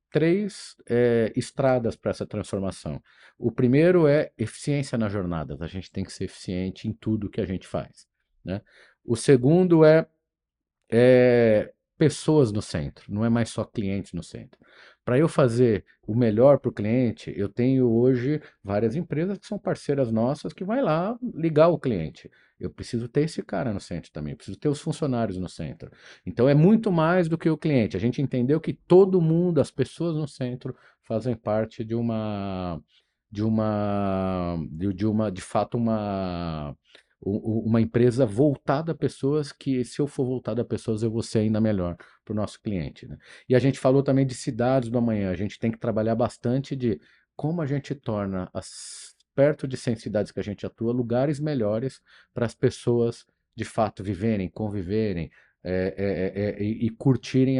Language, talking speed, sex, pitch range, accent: Portuguese, 180 wpm, male, 105-140 Hz, Brazilian